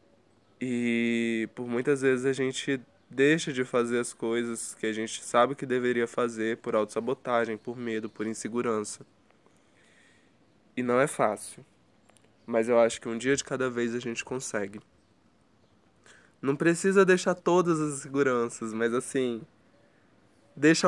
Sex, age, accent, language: male, 20-39, Brazilian, Portuguese